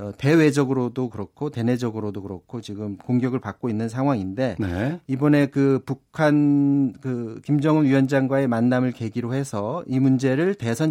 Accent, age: native, 40-59